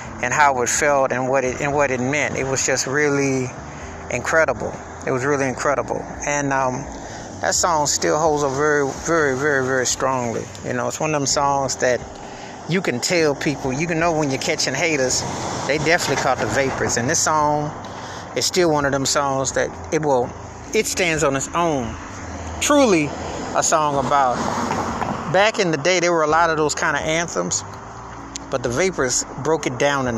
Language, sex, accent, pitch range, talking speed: English, male, American, 130-160 Hz, 195 wpm